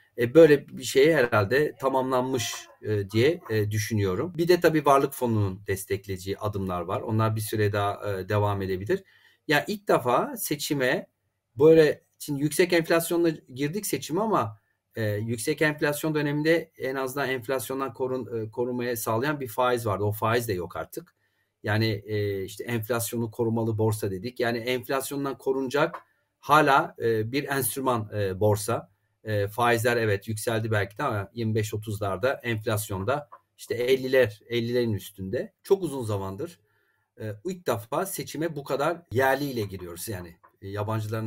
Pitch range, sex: 100-130 Hz, male